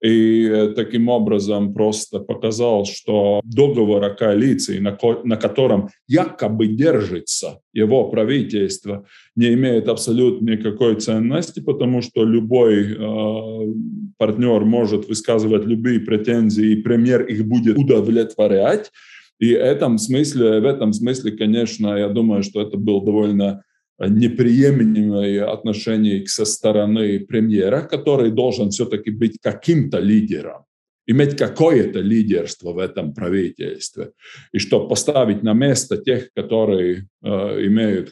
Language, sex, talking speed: Russian, male, 115 wpm